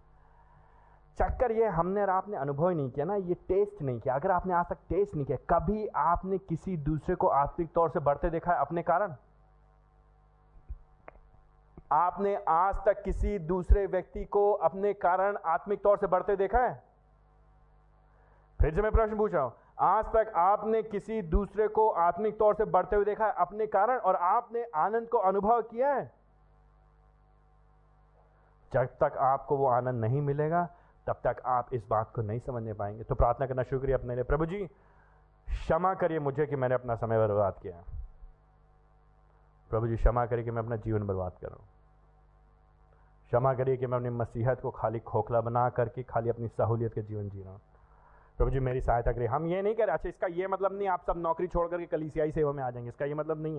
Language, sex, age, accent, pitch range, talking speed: Hindi, male, 40-59, native, 120-195 Hz, 185 wpm